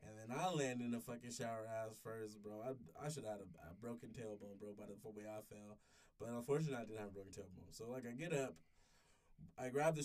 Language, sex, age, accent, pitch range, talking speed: English, male, 20-39, American, 105-145 Hz, 245 wpm